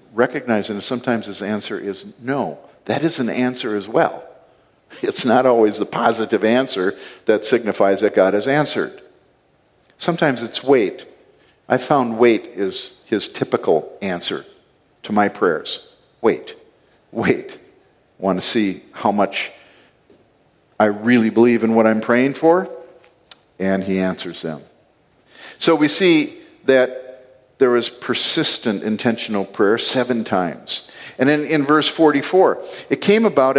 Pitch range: 110-170 Hz